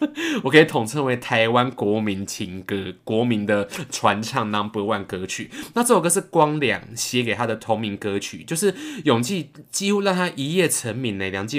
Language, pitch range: Chinese, 125-185 Hz